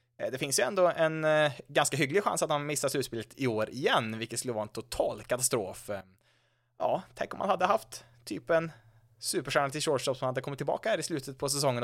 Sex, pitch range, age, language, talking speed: male, 120-160 Hz, 20-39, Swedish, 210 wpm